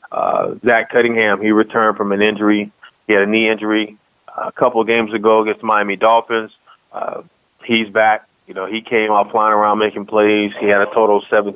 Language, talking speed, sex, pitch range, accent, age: English, 210 wpm, male, 100-110 Hz, American, 30-49